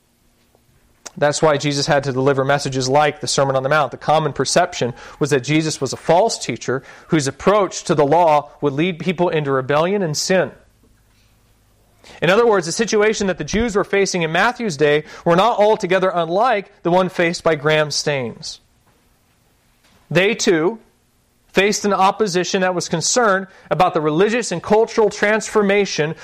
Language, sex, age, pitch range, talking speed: English, male, 40-59, 150-200 Hz, 165 wpm